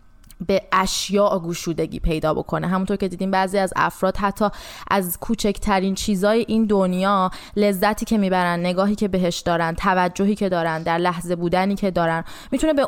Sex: female